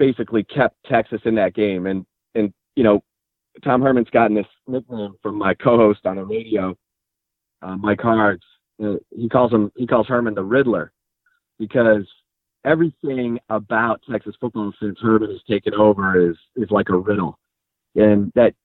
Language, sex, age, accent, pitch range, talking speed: English, male, 30-49, American, 105-120 Hz, 160 wpm